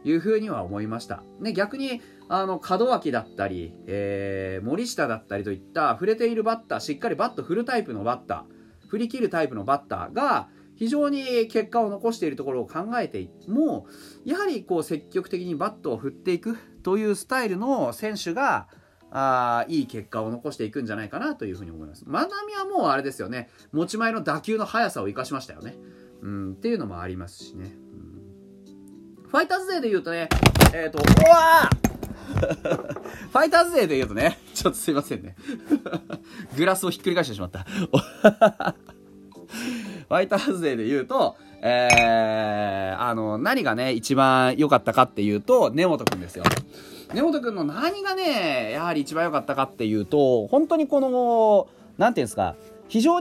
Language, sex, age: Japanese, male, 30-49